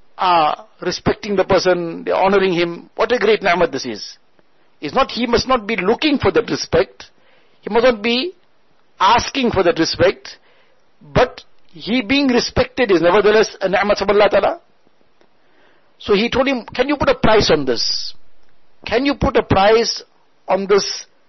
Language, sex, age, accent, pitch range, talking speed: English, male, 60-79, Indian, 200-270 Hz, 165 wpm